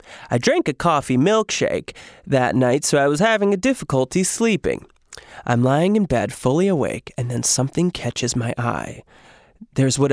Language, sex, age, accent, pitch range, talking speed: English, male, 20-39, American, 125-160 Hz, 165 wpm